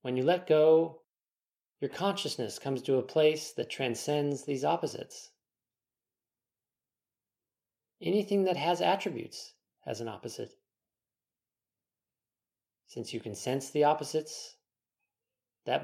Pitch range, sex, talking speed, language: 115-155 Hz, male, 105 wpm, English